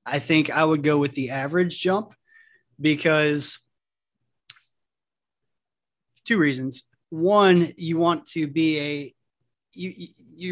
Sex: male